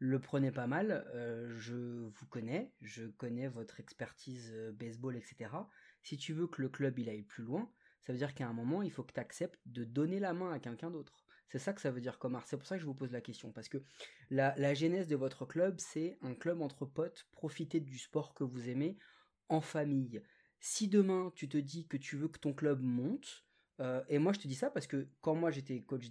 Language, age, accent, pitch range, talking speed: French, 30-49, French, 130-170 Hz, 240 wpm